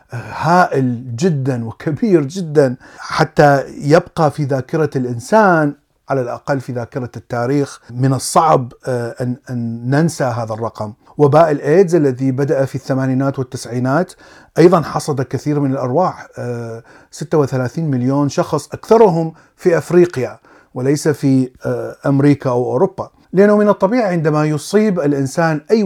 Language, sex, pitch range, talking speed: Arabic, male, 130-170 Hz, 115 wpm